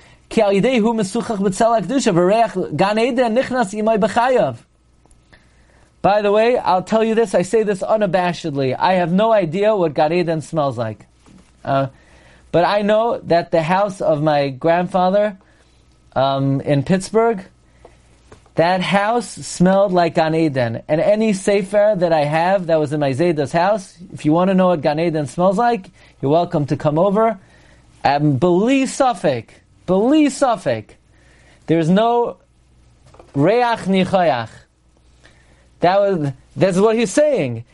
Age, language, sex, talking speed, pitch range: 40-59, English, male, 125 wpm, 145-215 Hz